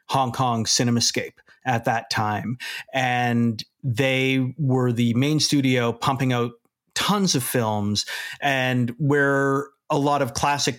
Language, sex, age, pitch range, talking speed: English, male, 40-59, 125-150 Hz, 130 wpm